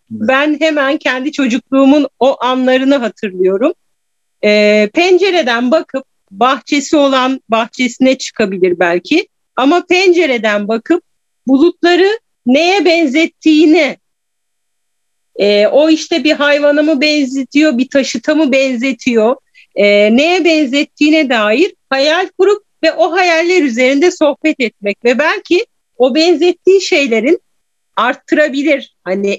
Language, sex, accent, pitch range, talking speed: Turkish, female, native, 245-325 Hz, 105 wpm